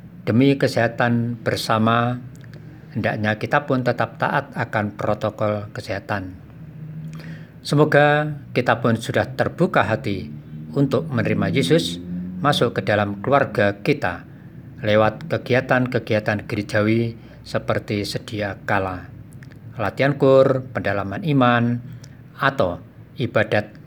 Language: Indonesian